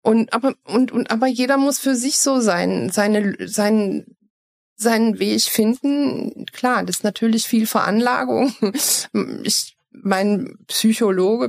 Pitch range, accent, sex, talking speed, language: 200-250 Hz, German, female, 130 wpm, German